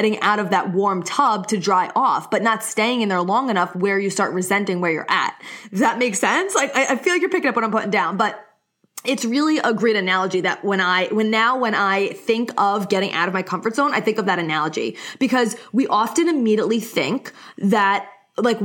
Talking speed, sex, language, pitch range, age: 230 wpm, female, English, 195-245 Hz, 20-39